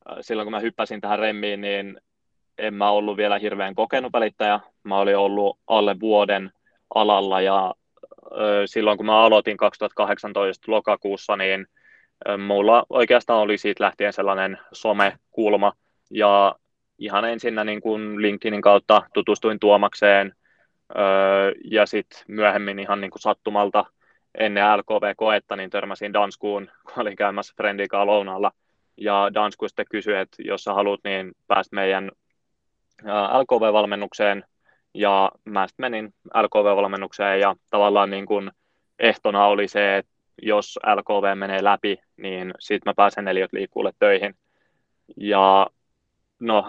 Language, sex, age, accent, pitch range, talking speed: Finnish, male, 20-39, native, 100-105 Hz, 120 wpm